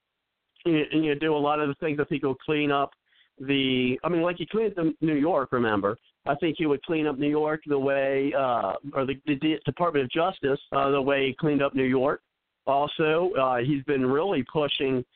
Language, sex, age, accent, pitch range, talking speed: English, male, 50-69, American, 130-155 Hz, 210 wpm